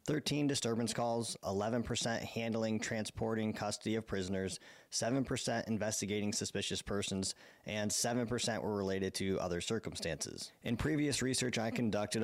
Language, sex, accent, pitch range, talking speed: English, male, American, 100-120 Hz, 125 wpm